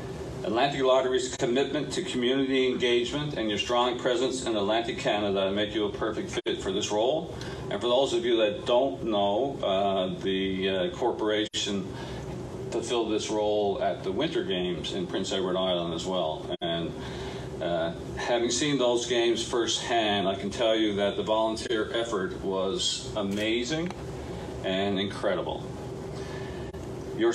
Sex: male